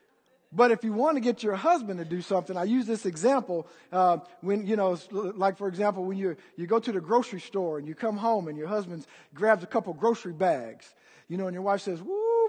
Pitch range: 190-285 Hz